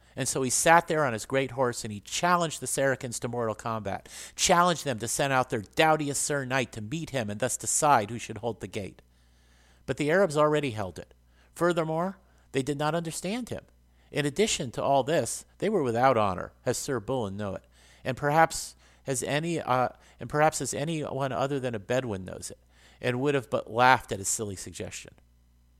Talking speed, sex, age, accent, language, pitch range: 200 wpm, male, 50-69, American, English, 95-135 Hz